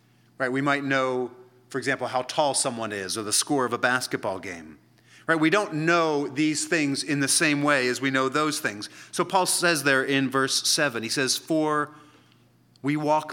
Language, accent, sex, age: English, American, male, 40-59